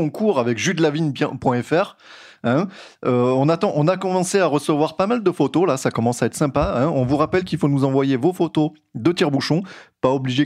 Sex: male